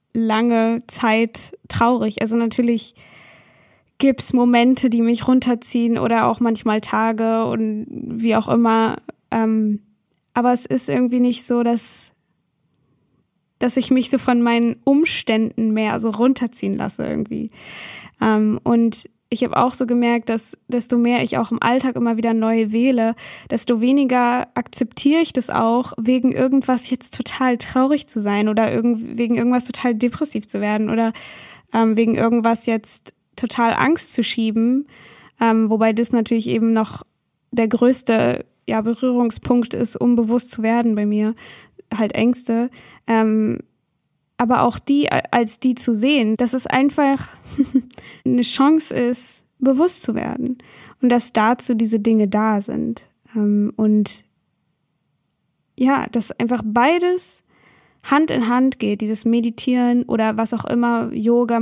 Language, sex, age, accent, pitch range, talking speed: German, female, 10-29, German, 225-250 Hz, 140 wpm